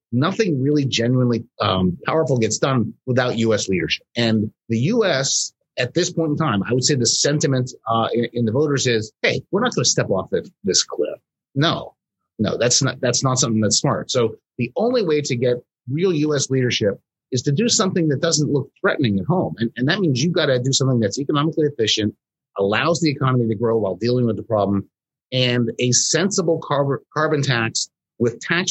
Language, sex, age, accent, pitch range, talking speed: English, male, 30-49, American, 115-145 Hz, 200 wpm